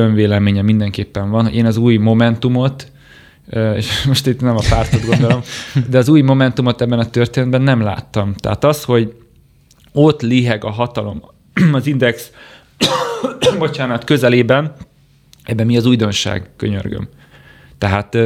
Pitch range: 105-120 Hz